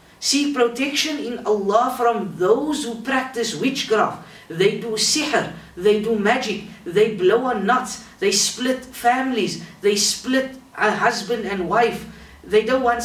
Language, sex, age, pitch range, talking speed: English, female, 50-69, 175-230 Hz, 145 wpm